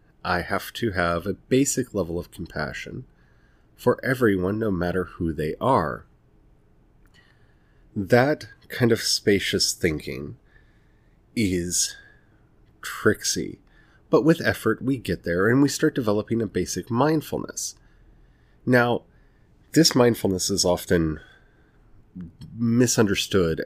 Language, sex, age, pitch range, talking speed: English, male, 30-49, 85-120 Hz, 105 wpm